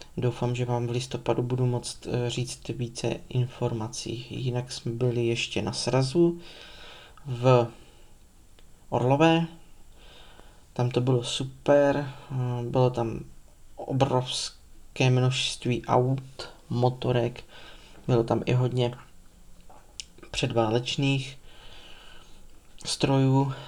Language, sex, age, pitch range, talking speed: Czech, male, 20-39, 120-130 Hz, 85 wpm